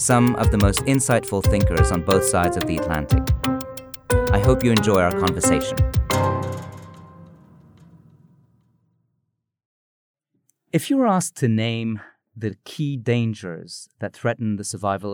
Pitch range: 100-135 Hz